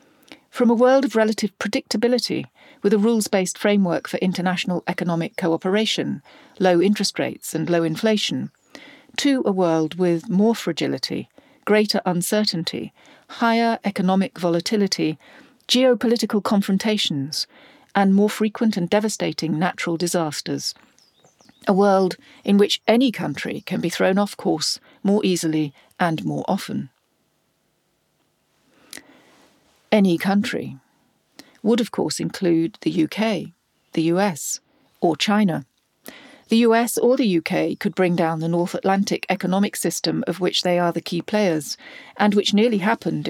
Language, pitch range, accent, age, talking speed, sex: English, 175-225 Hz, British, 50-69, 130 wpm, female